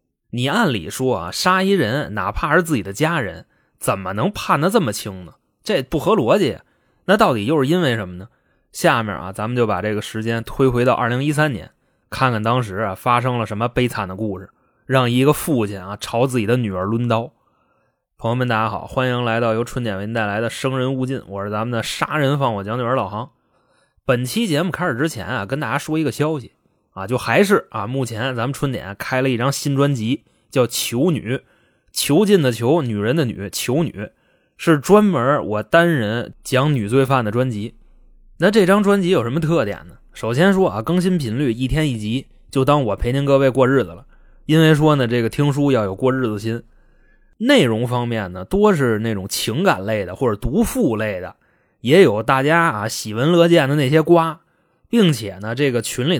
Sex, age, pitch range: male, 20-39, 110-155 Hz